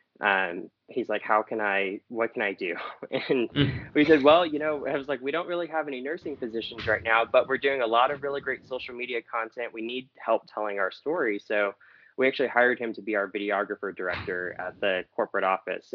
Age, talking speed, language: 20-39, 220 wpm, English